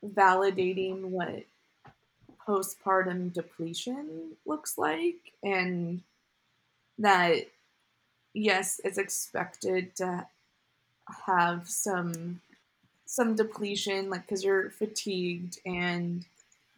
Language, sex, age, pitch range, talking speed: English, female, 20-39, 180-205 Hz, 75 wpm